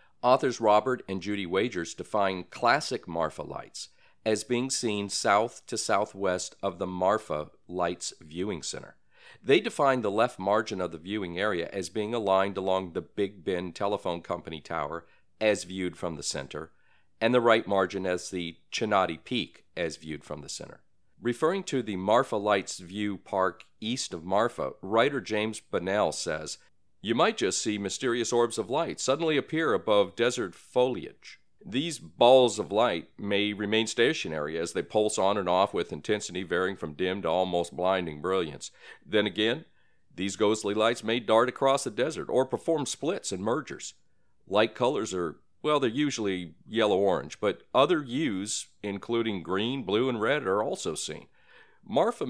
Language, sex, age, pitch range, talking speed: English, male, 50-69, 90-110 Hz, 160 wpm